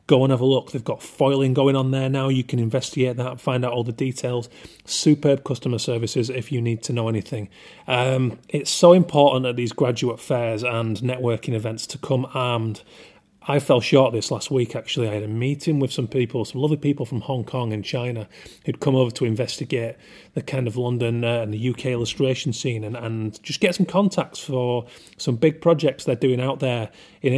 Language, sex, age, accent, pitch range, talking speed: English, male, 30-49, British, 120-140 Hz, 215 wpm